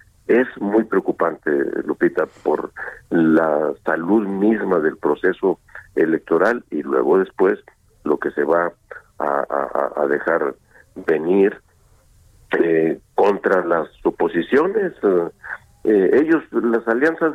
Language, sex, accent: Spanish, male, Mexican